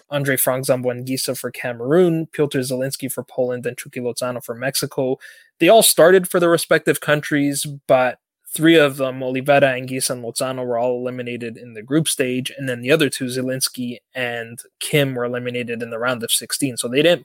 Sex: male